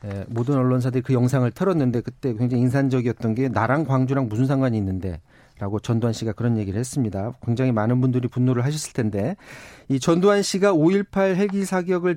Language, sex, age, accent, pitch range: Korean, male, 40-59, native, 120-160 Hz